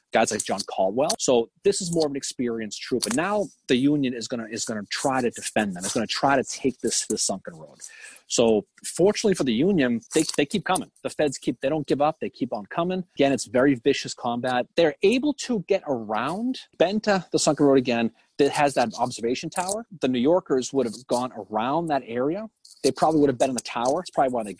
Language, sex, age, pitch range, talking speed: English, male, 30-49, 125-185 Hz, 240 wpm